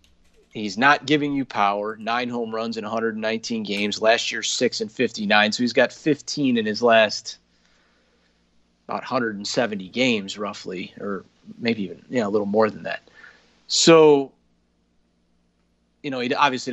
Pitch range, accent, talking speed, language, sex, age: 100-125 Hz, American, 145 wpm, English, male, 30-49